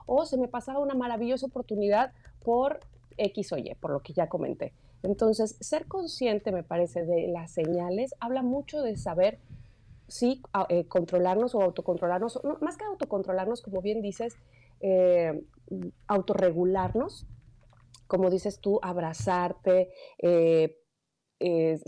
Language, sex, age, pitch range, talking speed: Spanish, female, 30-49, 170-220 Hz, 135 wpm